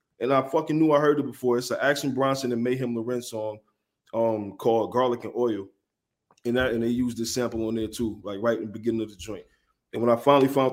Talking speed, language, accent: 245 wpm, English, American